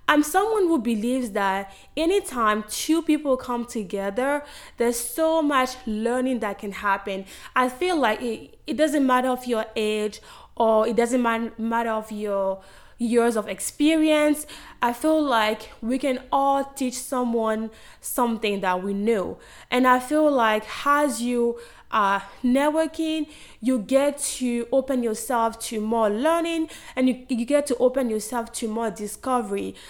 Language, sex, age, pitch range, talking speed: English, female, 20-39, 220-285 Hz, 150 wpm